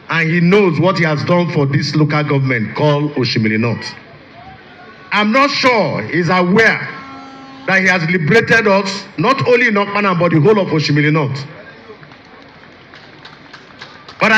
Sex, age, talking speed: male, 50-69, 140 wpm